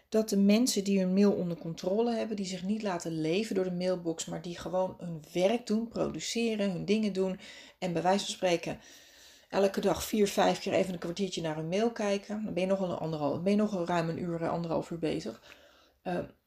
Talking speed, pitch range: 220 wpm, 180-225 Hz